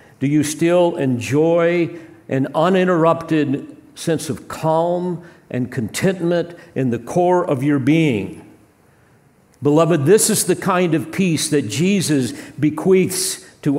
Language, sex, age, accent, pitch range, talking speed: English, male, 50-69, American, 120-165 Hz, 120 wpm